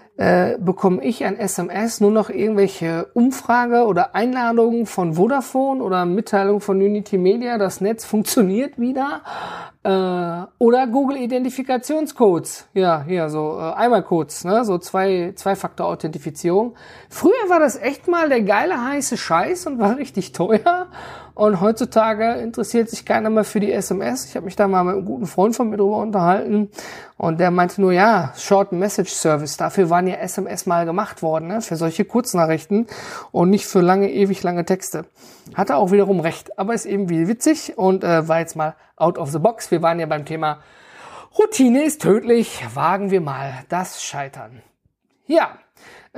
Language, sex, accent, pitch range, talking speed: German, male, German, 180-235 Hz, 170 wpm